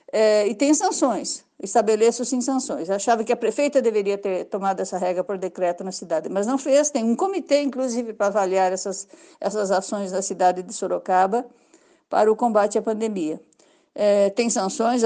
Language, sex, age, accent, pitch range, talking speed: Portuguese, female, 50-69, Brazilian, 190-260 Hz, 175 wpm